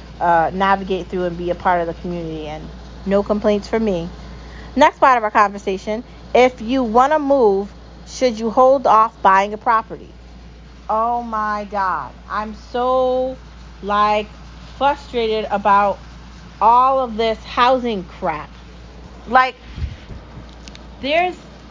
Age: 40-59